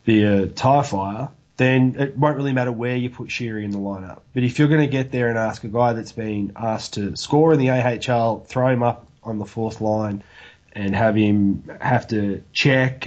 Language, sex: English, male